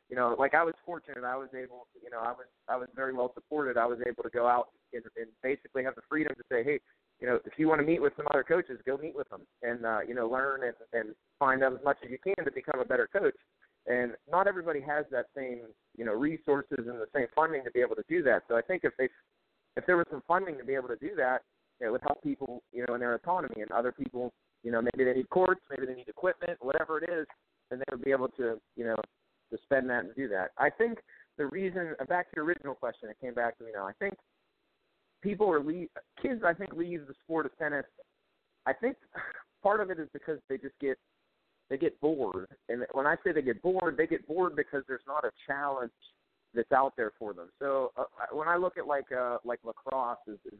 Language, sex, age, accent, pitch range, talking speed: English, male, 30-49, American, 125-175 Hz, 255 wpm